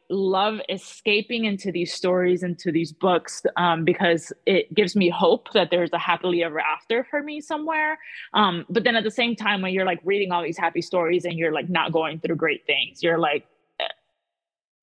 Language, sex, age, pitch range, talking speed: English, female, 20-39, 175-220 Hz, 200 wpm